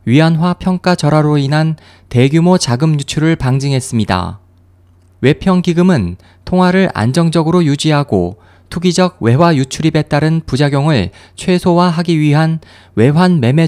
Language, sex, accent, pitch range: Korean, male, native, 115-170 Hz